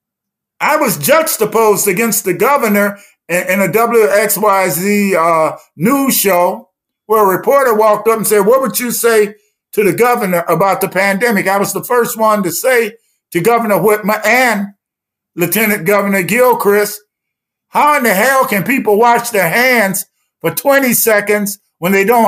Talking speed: 155 wpm